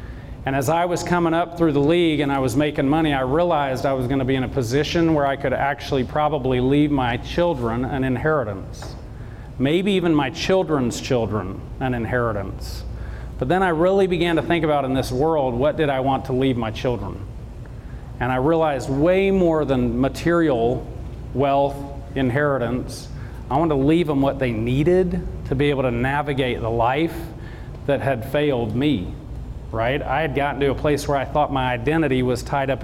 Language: English